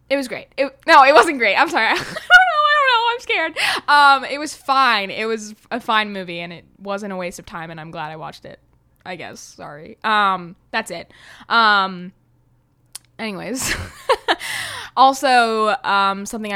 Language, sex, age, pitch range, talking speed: English, female, 10-29, 195-270 Hz, 185 wpm